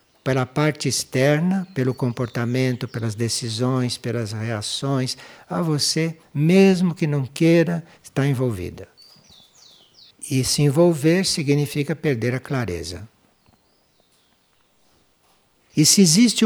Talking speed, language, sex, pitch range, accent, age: 100 wpm, Portuguese, male, 115-155 Hz, Brazilian, 60-79